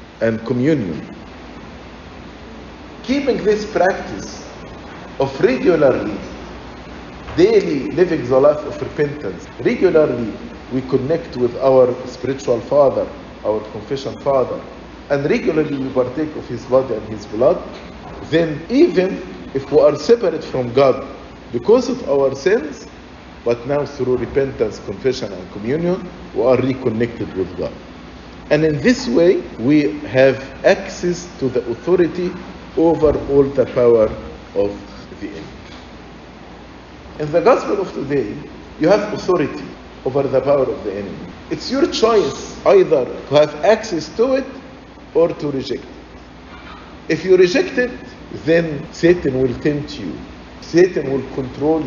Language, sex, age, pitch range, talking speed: English, male, 50-69, 125-180 Hz, 130 wpm